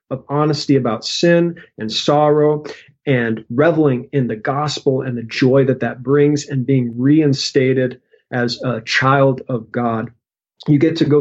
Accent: American